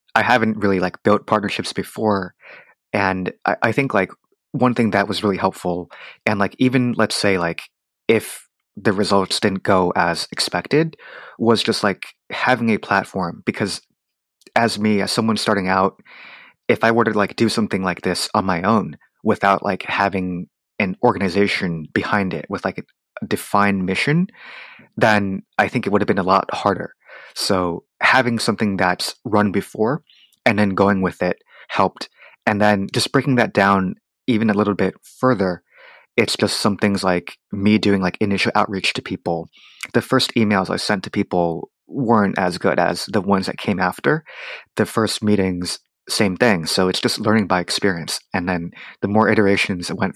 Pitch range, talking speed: 95-110 Hz, 175 wpm